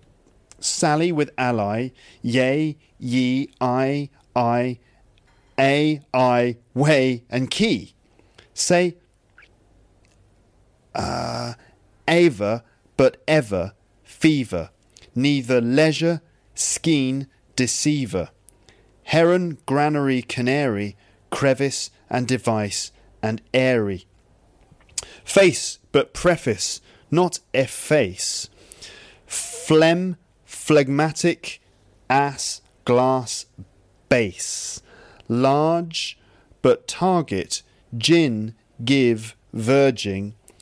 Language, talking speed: English, 70 wpm